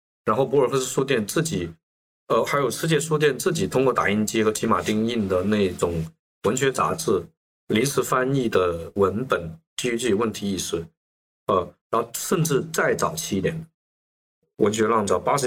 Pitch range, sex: 90-150 Hz, male